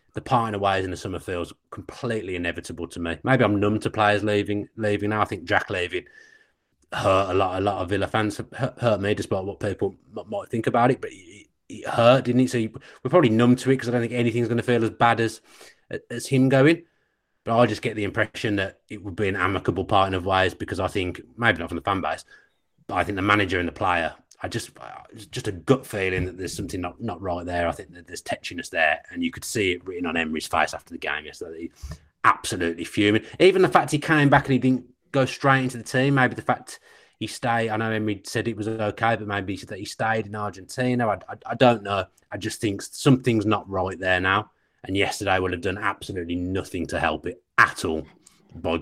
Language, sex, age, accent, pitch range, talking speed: English, male, 30-49, British, 95-125 Hz, 240 wpm